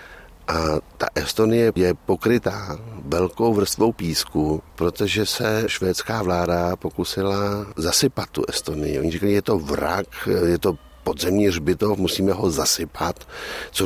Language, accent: Czech, native